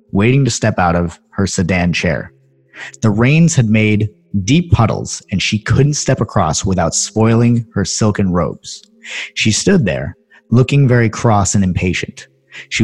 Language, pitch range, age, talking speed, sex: English, 95-130 Hz, 30-49, 155 wpm, male